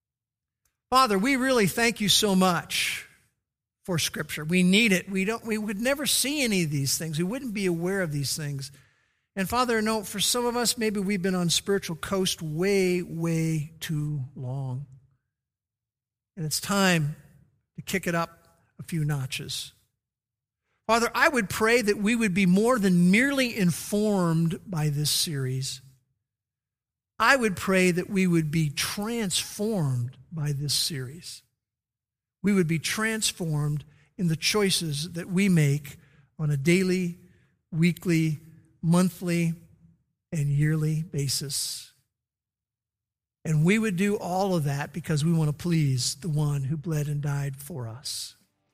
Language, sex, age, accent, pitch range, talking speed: English, male, 50-69, American, 140-190 Hz, 150 wpm